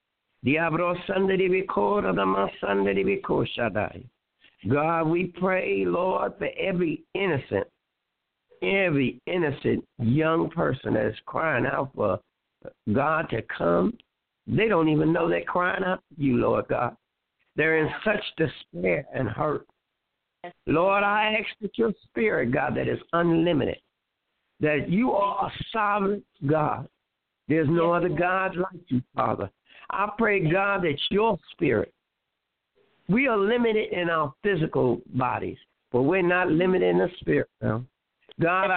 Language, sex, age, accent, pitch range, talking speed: English, male, 60-79, American, 155-205 Hz, 125 wpm